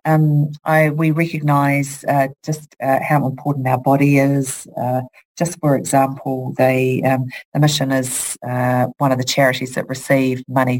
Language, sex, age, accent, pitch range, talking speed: English, female, 40-59, Australian, 130-145 Hz, 160 wpm